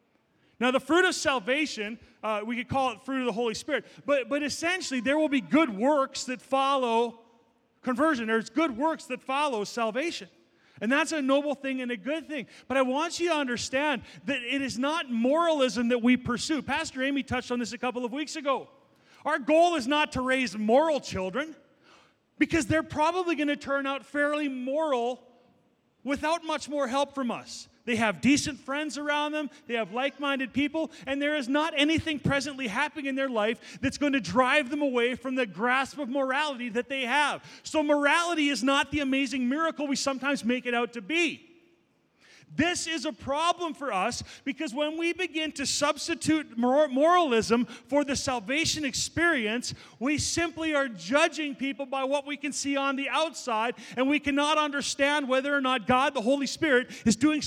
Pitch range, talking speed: 250-300 Hz, 185 wpm